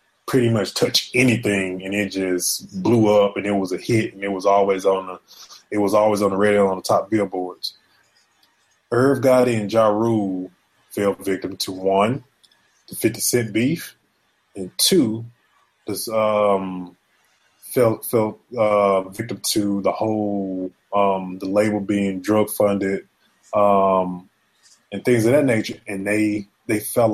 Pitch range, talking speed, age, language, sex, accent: 100-140 Hz, 155 wpm, 20-39, English, male, American